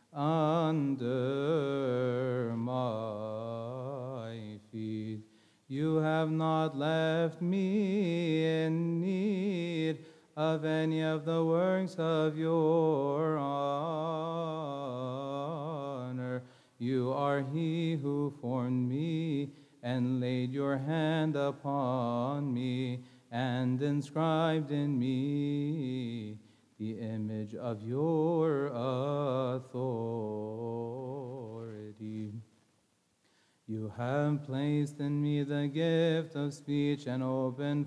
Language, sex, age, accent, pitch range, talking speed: English, male, 30-49, American, 125-160 Hz, 80 wpm